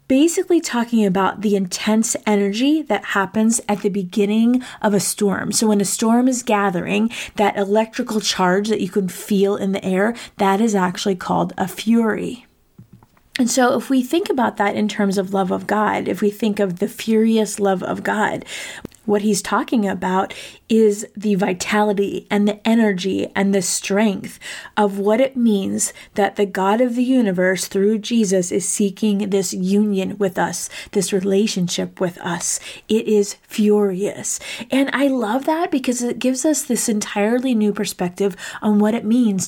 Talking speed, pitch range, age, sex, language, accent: 170 wpm, 195-225 Hz, 20-39, female, English, American